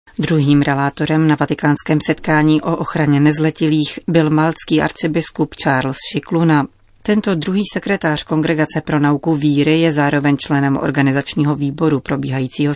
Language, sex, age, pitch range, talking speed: Czech, female, 30-49, 145-160 Hz, 120 wpm